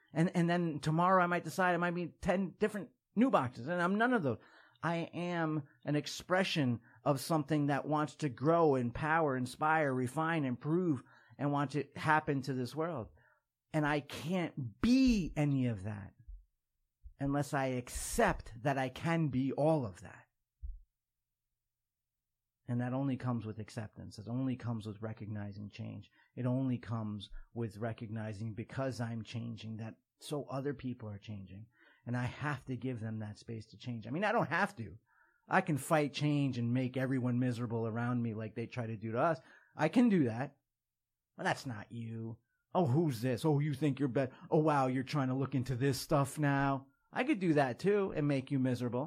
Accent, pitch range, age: American, 115-155 Hz, 50-69